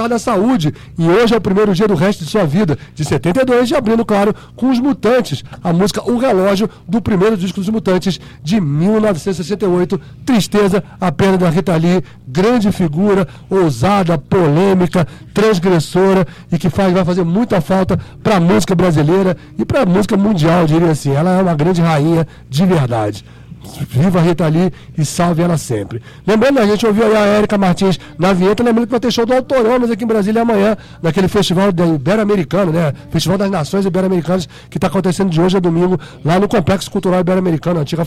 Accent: Brazilian